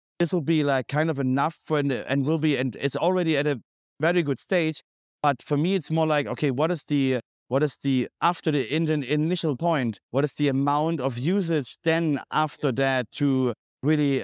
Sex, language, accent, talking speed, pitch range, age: male, English, German, 210 wpm, 130-155 Hz, 30-49